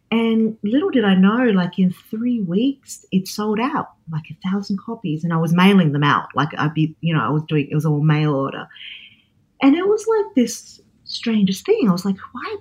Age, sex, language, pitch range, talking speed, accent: 30-49, female, English, 155-215 Hz, 225 wpm, Australian